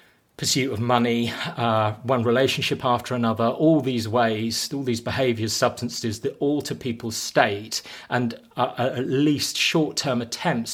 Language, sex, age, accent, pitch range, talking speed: English, male, 30-49, British, 105-120 Hz, 135 wpm